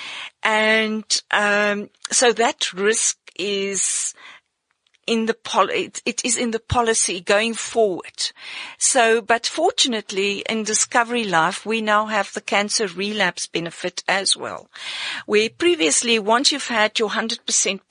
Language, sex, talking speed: English, female, 125 wpm